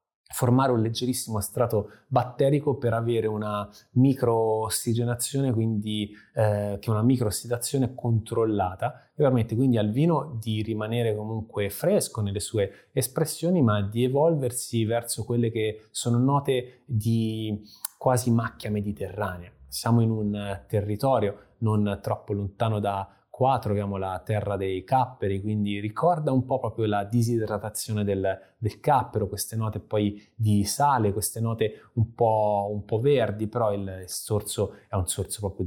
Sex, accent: male, native